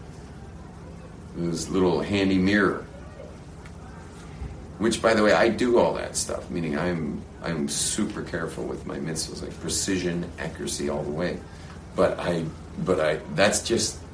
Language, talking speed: English, 140 wpm